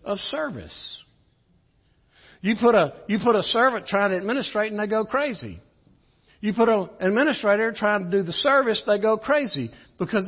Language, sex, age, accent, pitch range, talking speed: English, male, 60-79, American, 180-240 Hz, 170 wpm